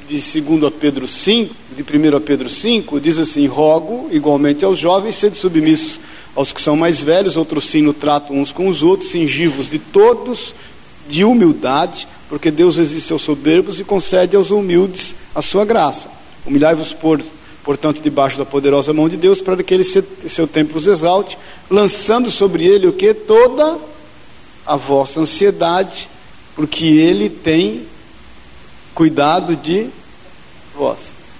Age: 60-79